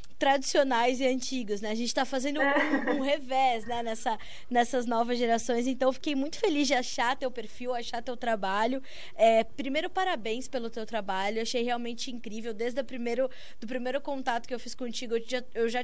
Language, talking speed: Portuguese, 190 wpm